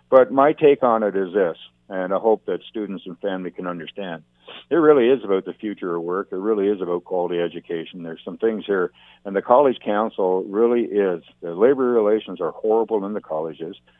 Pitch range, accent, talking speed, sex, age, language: 85-110 Hz, American, 205 wpm, male, 60-79, English